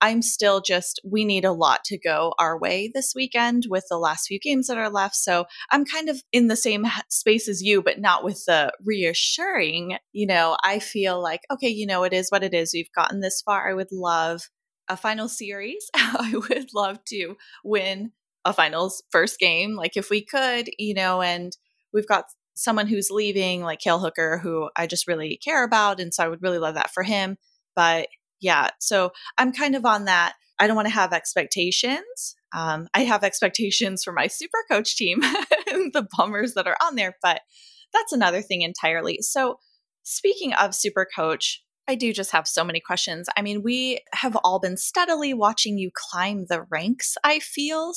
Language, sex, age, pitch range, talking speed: English, female, 20-39, 180-235 Hz, 200 wpm